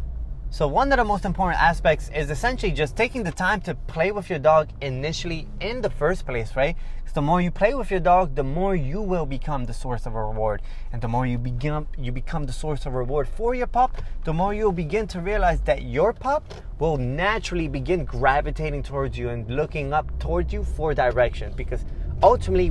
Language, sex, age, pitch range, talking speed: English, male, 20-39, 125-180 Hz, 205 wpm